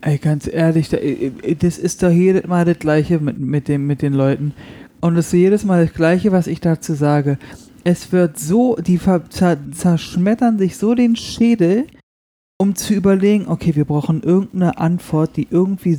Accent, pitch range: German, 155-190 Hz